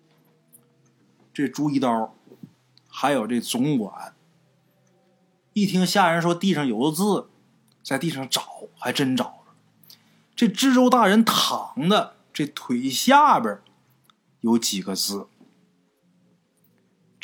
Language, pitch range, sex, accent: Chinese, 145-230 Hz, male, native